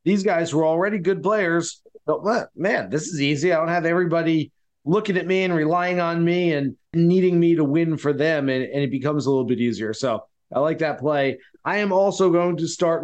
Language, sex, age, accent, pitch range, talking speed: English, male, 30-49, American, 155-190 Hz, 220 wpm